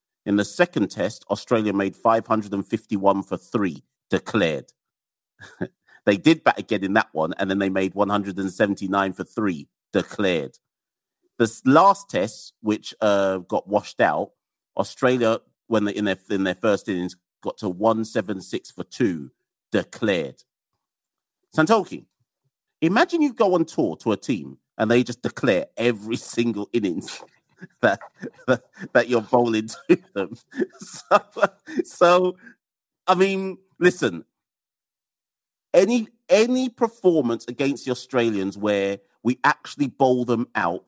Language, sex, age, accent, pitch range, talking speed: English, male, 50-69, British, 105-140 Hz, 130 wpm